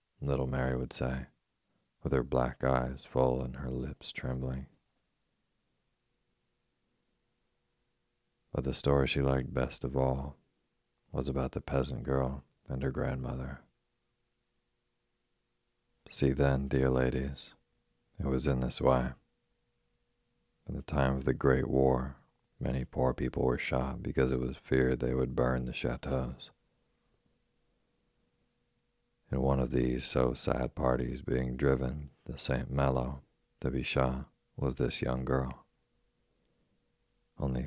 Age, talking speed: 40-59, 125 wpm